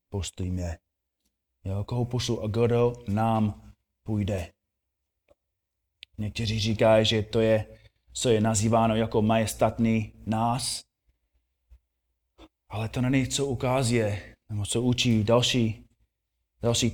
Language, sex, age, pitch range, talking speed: Czech, male, 20-39, 105-155 Hz, 105 wpm